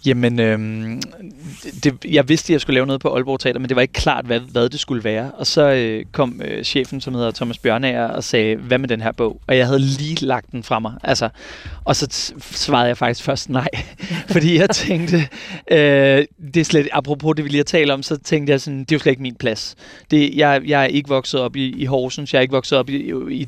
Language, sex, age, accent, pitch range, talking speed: Danish, male, 30-49, native, 125-150 Hz, 250 wpm